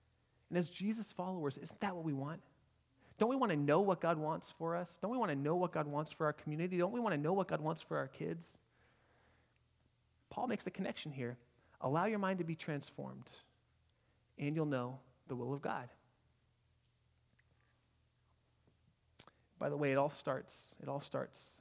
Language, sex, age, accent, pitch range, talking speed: English, male, 30-49, American, 145-200 Hz, 190 wpm